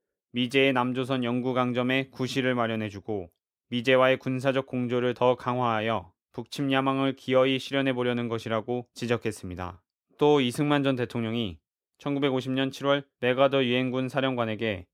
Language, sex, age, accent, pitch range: Korean, male, 20-39, native, 115-135 Hz